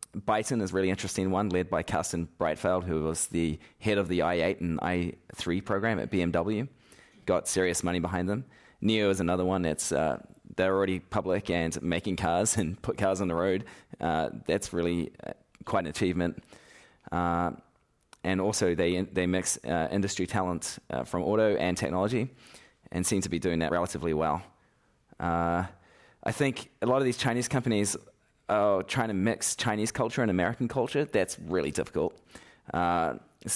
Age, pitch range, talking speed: 20-39, 85-100 Hz, 170 wpm